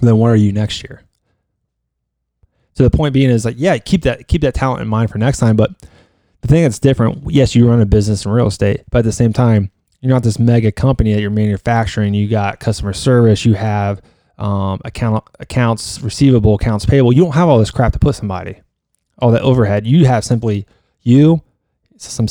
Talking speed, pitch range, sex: 210 wpm, 105-120 Hz, male